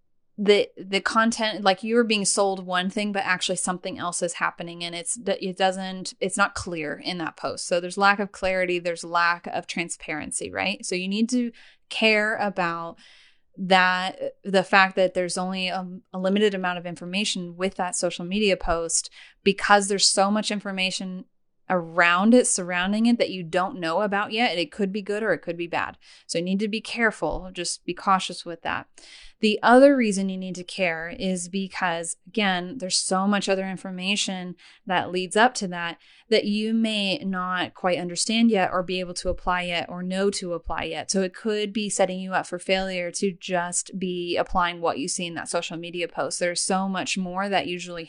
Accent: American